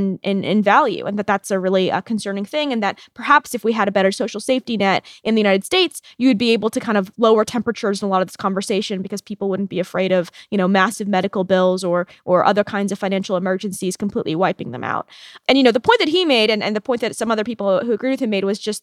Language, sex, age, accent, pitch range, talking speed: English, female, 20-39, American, 200-235 Hz, 270 wpm